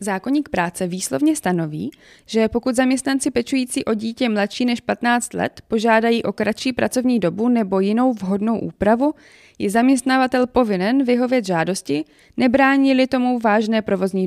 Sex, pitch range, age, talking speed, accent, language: female, 195-250 Hz, 20-39, 135 wpm, native, Czech